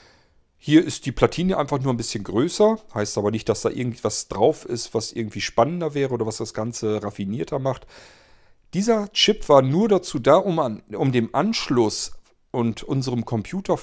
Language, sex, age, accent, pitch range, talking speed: German, male, 40-59, German, 110-150 Hz, 175 wpm